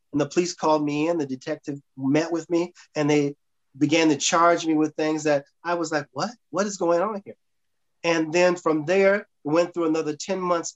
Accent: American